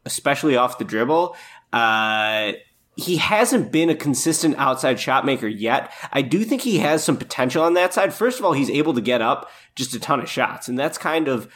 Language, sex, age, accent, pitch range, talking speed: English, male, 20-39, American, 115-165 Hz, 215 wpm